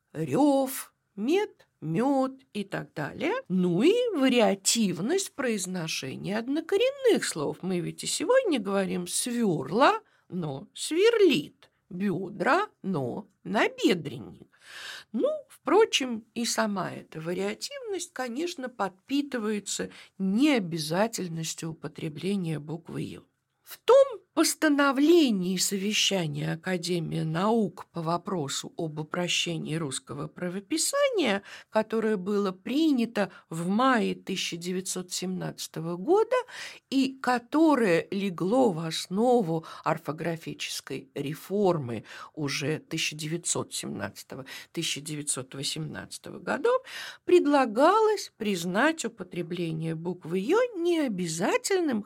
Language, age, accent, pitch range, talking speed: Russian, 50-69, native, 175-285 Hz, 80 wpm